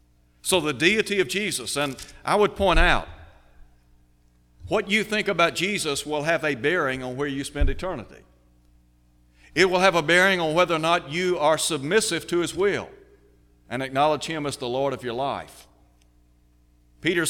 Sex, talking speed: male, 170 wpm